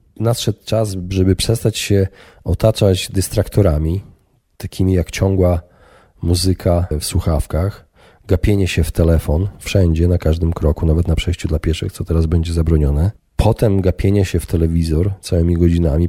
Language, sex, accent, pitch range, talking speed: Polish, male, native, 85-100 Hz, 140 wpm